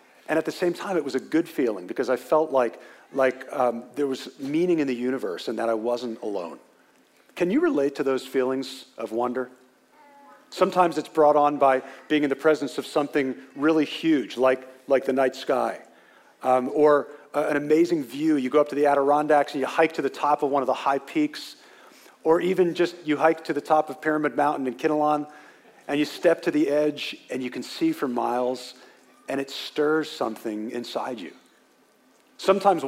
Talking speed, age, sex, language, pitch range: 200 wpm, 40-59, male, English, 130-165 Hz